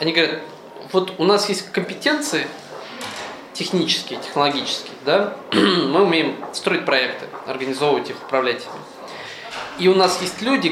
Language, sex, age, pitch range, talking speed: Russian, male, 20-39, 155-205 Hz, 125 wpm